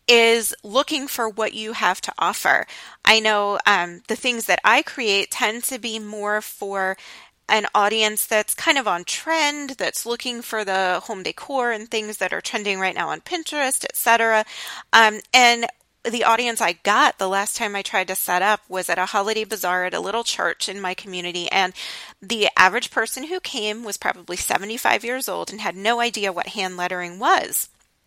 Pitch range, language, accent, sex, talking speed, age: 195-235 Hz, English, American, female, 190 wpm, 30-49